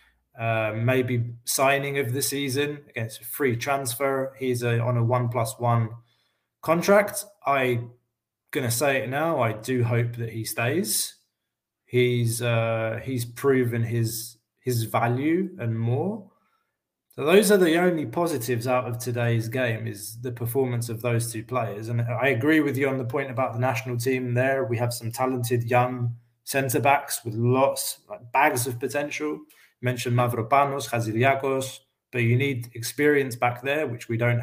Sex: male